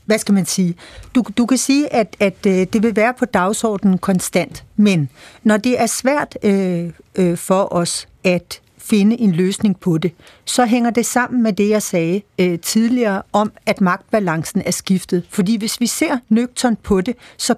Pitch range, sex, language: 195-235 Hz, female, Danish